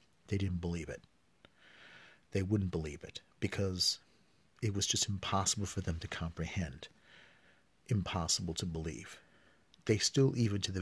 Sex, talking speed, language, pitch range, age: male, 140 wpm, English, 85-100 Hz, 50-69